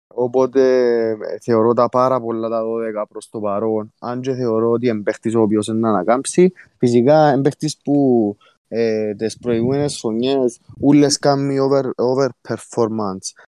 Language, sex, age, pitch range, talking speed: Greek, male, 20-39, 110-130 Hz, 130 wpm